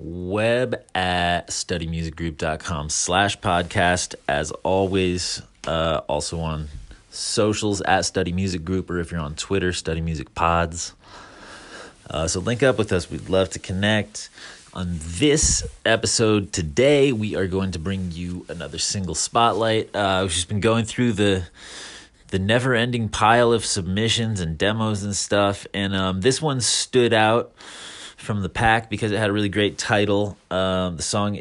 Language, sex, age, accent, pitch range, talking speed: English, male, 30-49, American, 85-110 Hz, 155 wpm